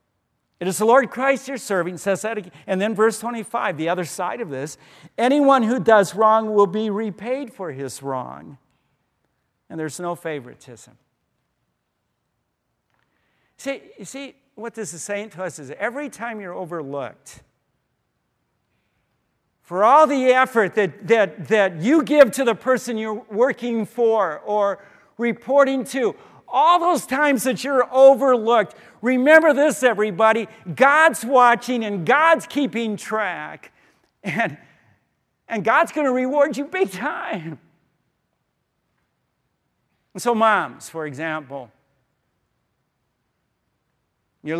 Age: 50-69